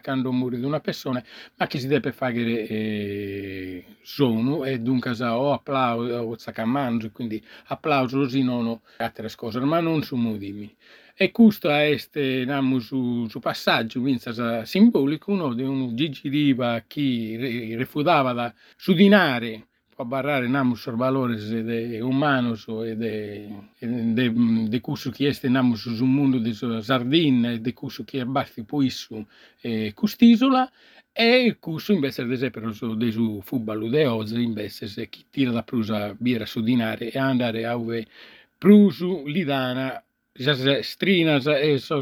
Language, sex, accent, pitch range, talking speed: Italian, male, native, 115-145 Hz, 145 wpm